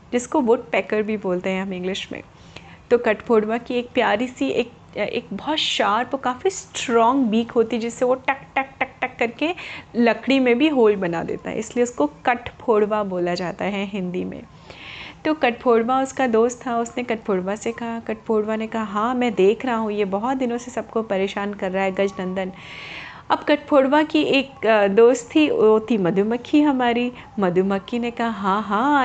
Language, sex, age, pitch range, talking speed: Hindi, female, 30-49, 205-250 Hz, 185 wpm